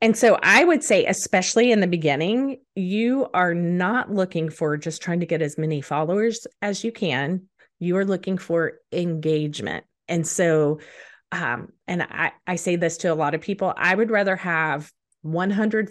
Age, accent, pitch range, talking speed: 30-49, American, 160-205 Hz, 175 wpm